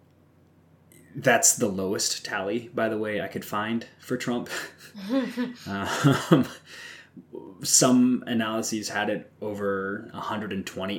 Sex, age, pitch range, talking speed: male, 20-39, 90-115 Hz, 105 wpm